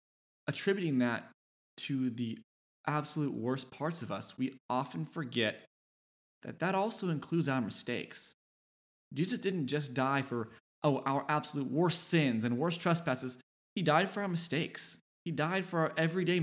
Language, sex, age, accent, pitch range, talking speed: English, male, 20-39, American, 120-165 Hz, 150 wpm